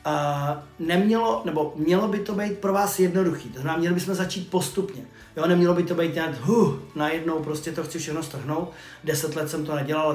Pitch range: 150-180 Hz